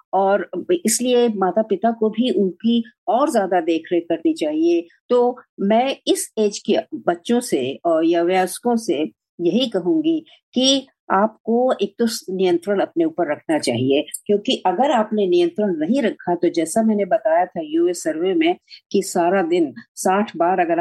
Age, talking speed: 50-69, 155 wpm